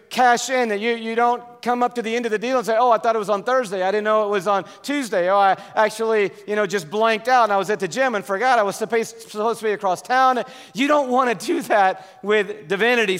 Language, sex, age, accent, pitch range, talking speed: English, male, 40-59, American, 190-230 Hz, 275 wpm